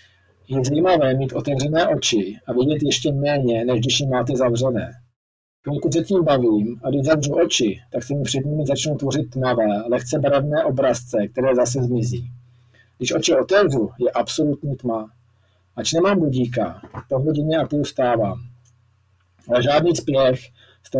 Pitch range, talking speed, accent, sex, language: 120-150 Hz, 150 wpm, native, male, Czech